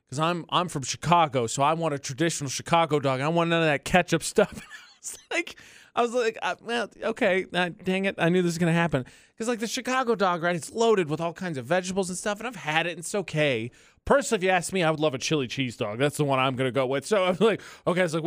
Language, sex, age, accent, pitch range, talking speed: English, male, 20-39, American, 155-215 Hz, 290 wpm